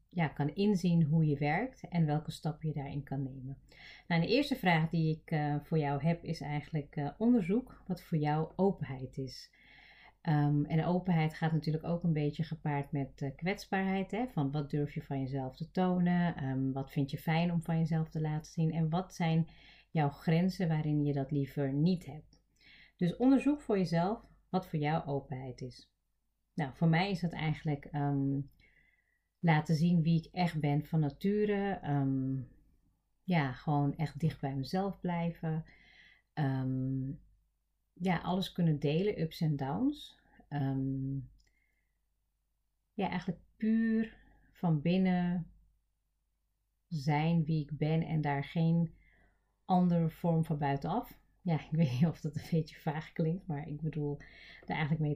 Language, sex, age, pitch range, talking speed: Dutch, female, 30-49, 145-170 Hz, 155 wpm